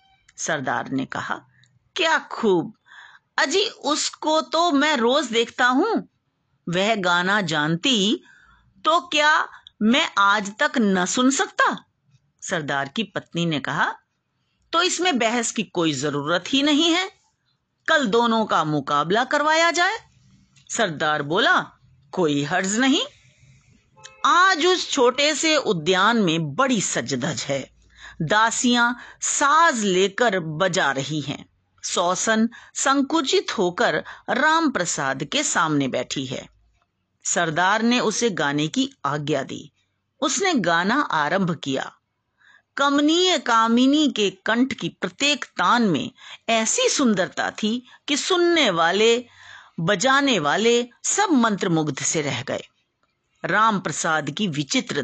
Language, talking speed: Hindi, 115 wpm